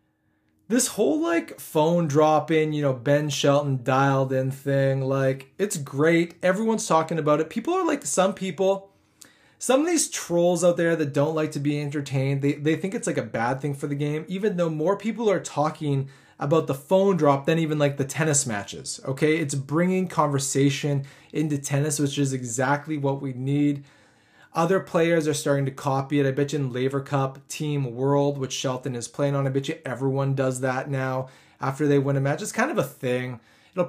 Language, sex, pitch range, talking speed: English, male, 135-160 Hz, 200 wpm